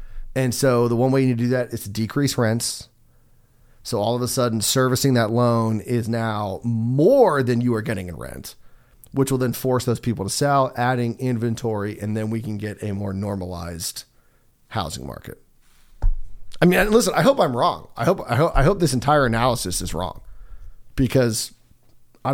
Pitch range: 110-130 Hz